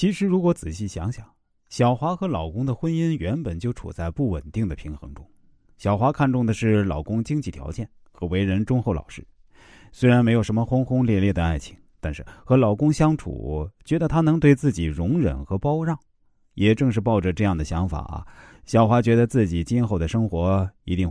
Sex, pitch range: male, 85-125 Hz